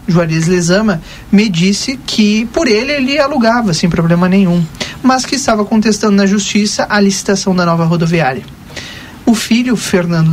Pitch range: 165-210 Hz